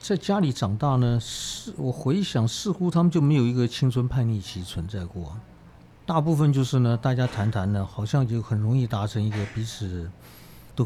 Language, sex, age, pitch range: Chinese, male, 50-69, 105-135 Hz